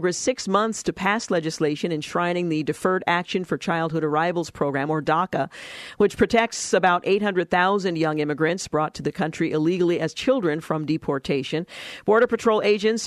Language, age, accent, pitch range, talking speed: English, 50-69, American, 155-195 Hz, 150 wpm